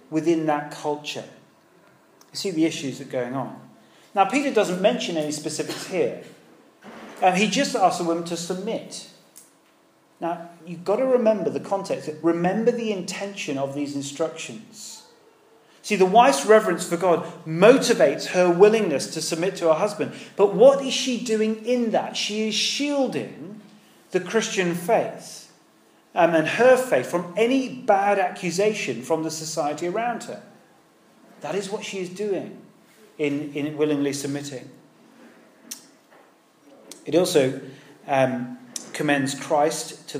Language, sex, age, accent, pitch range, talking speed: English, male, 40-59, British, 155-215 Hz, 140 wpm